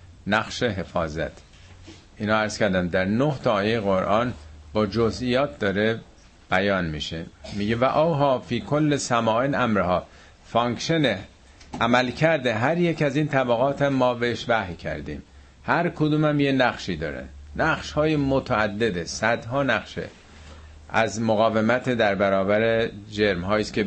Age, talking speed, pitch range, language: 50-69, 130 wpm, 95-125 Hz, Persian